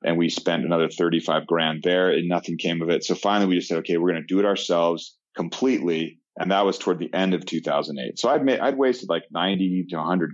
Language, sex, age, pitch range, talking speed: English, male, 30-49, 80-95 Hz, 245 wpm